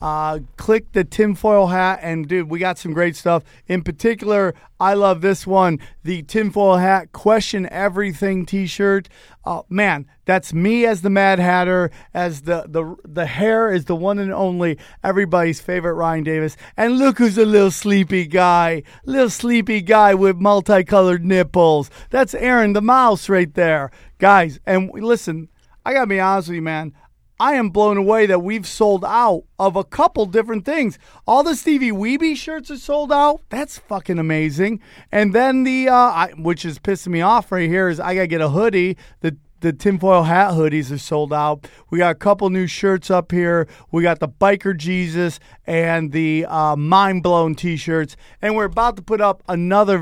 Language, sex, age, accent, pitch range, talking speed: English, male, 40-59, American, 165-205 Hz, 180 wpm